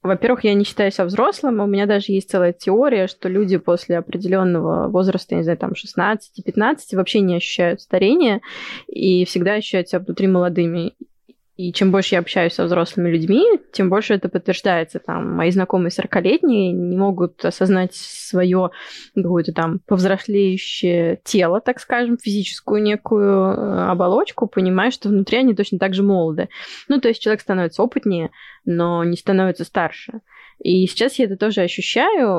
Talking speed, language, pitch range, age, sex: 155 wpm, Russian, 185-220 Hz, 20-39, female